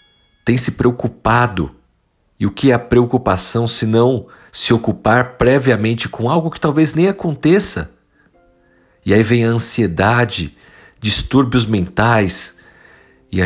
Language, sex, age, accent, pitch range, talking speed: Portuguese, male, 50-69, Brazilian, 90-120 Hz, 130 wpm